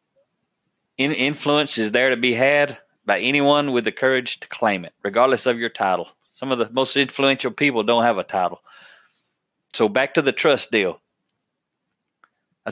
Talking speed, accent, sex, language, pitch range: 170 wpm, American, male, English, 115-145 Hz